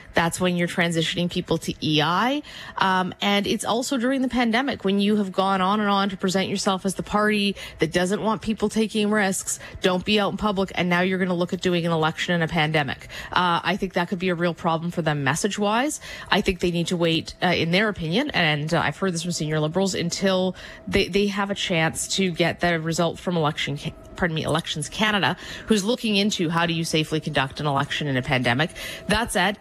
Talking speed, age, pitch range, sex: 230 wpm, 30-49, 165-205 Hz, female